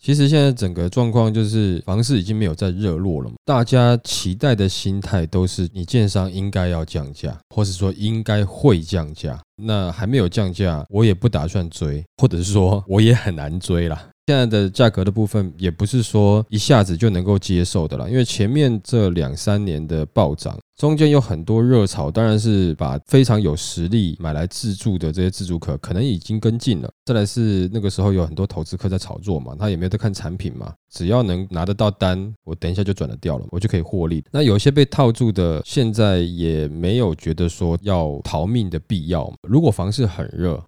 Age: 20-39